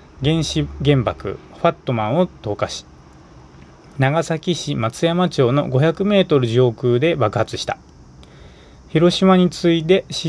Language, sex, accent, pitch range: Japanese, male, native, 115-150 Hz